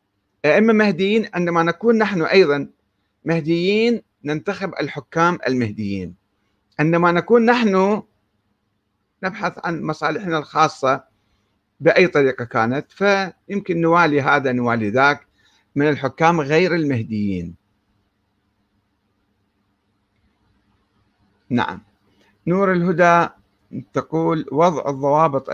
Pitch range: 105-160 Hz